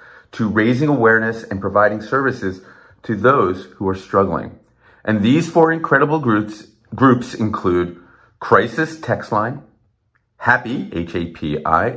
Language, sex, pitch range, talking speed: English, male, 100-140 Hz, 115 wpm